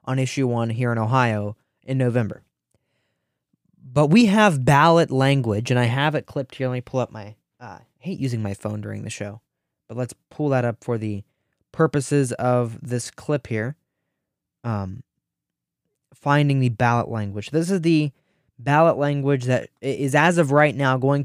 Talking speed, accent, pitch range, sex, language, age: 175 wpm, American, 125-150 Hz, male, English, 20-39